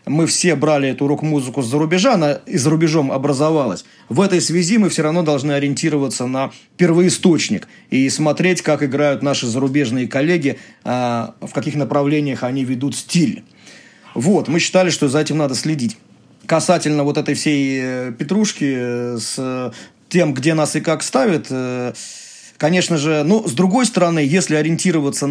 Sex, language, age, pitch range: male, Russian, 30-49, 135-170 Hz